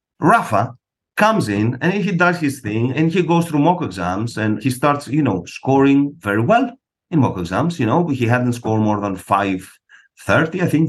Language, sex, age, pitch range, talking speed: English, male, 50-69, 110-160 Hz, 195 wpm